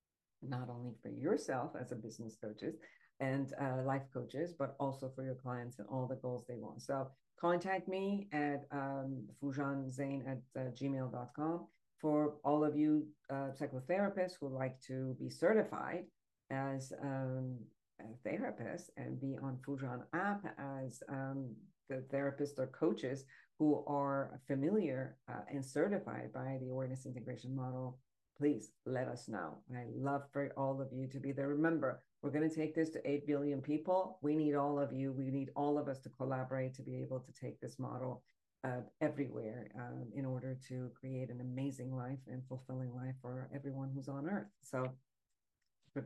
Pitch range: 130-145 Hz